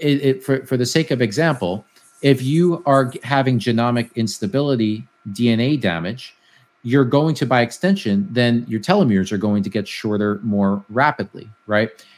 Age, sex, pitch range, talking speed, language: 40-59, male, 110-135 Hz, 160 wpm, English